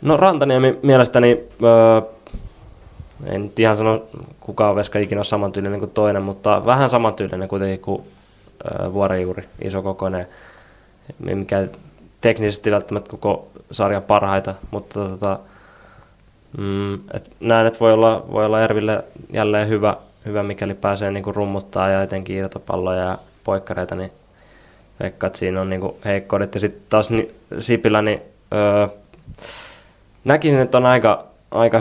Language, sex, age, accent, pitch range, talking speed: Finnish, male, 20-39, native, 100-110 Hz, 130 wpm